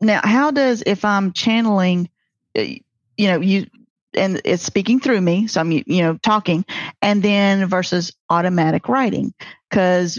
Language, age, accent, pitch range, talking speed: English, 40-59, American, 175-210 Hz, 145 wpm